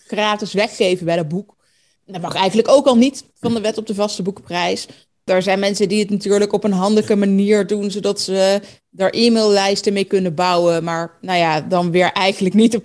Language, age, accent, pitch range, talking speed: Dutch, 20-39, Dutch, 180-210 Hz, 205 wpm